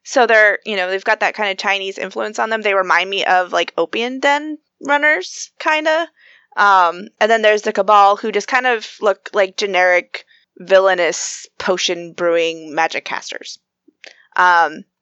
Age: 20-39